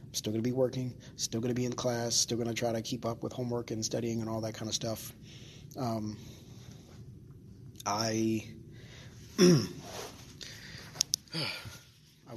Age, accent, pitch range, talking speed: 20-39, American, 110-130 Hz, 135 wpm